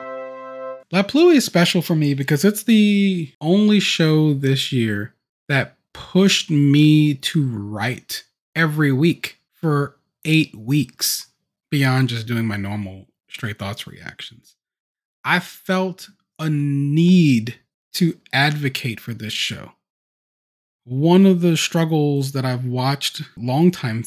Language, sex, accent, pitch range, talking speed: English, male, American, 125-175 Hz, 120 wpm